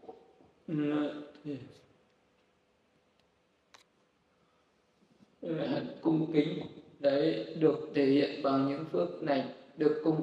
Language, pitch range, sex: Vietnamese, 135-150 Hz, male